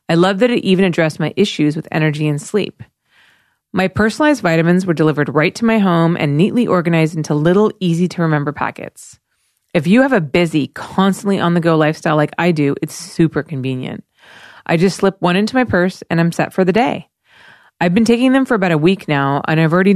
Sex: female